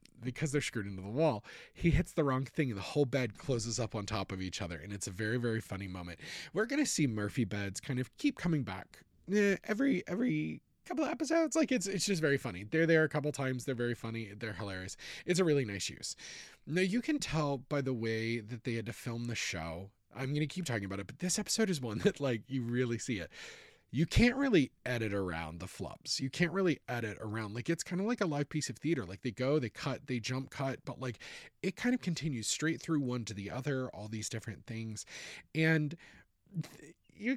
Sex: male